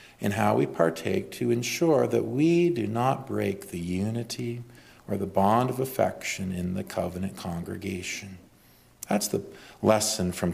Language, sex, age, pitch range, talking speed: English, male, 40-59, 95-130 Hz, 150 wpm